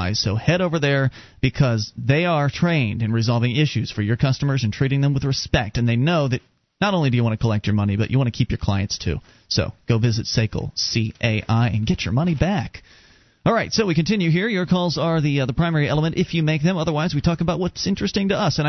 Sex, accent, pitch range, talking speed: male, American, 120-170 Hz, 245 wpm